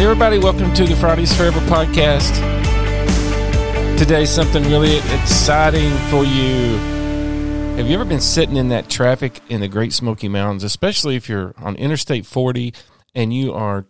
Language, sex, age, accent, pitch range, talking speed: English, male, 40-59, American, 110-155 Hz, 150 wpm